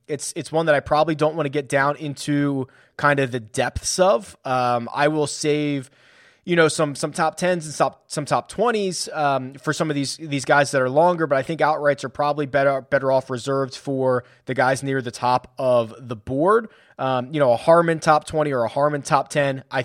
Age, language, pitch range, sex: 20-39, English, 130-155 Hz, male